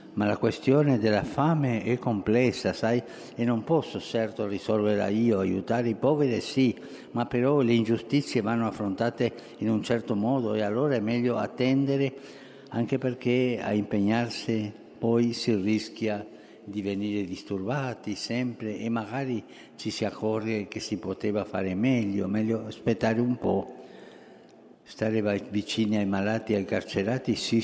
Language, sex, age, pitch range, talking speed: Italian, male, 60-79, 105-120 Hz, 145 wpm